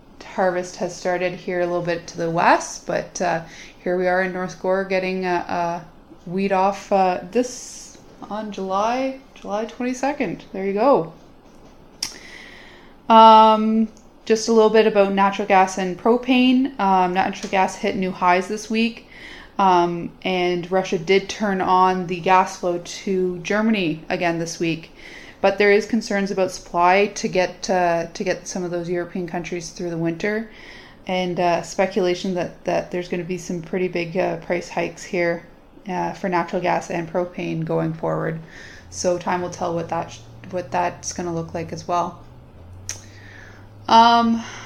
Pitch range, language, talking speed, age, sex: 175-200 Hz, English, 165 wpm, 20-39, female